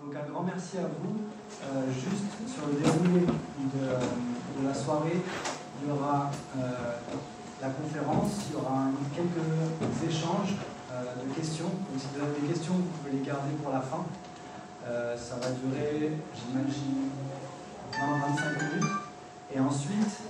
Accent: French